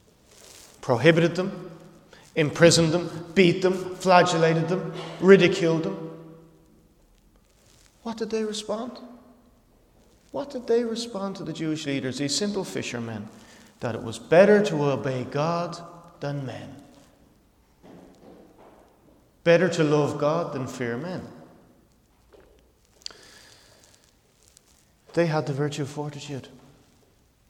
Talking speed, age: 105 wpm, 30-49